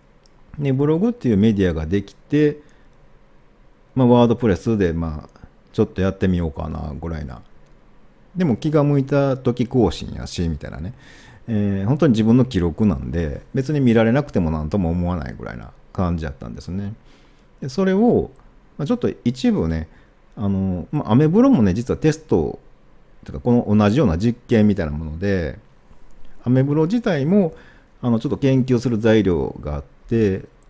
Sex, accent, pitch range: male, Japanese, 85-125 Hz